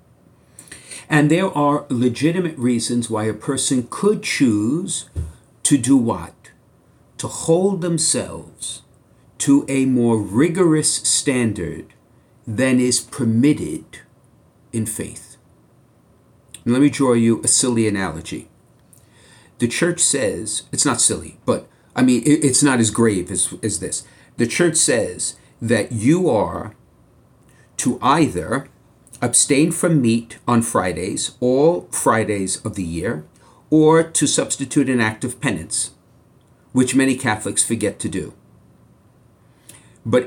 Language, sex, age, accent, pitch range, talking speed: English, male, 50-69, American, 115-145 Hz, 120 wpm